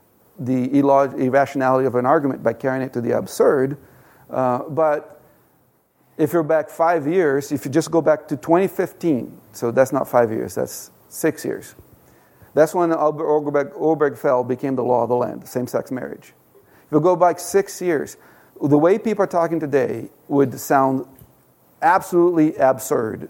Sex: male